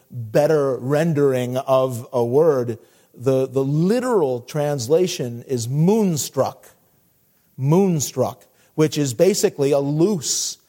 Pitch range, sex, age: 135-200 Hz, male, 40-59